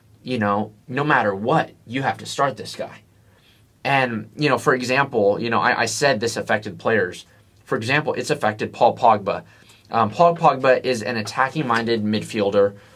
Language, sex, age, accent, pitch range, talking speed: English, male, 20-39, American, 105-125 Hz, 170 wpm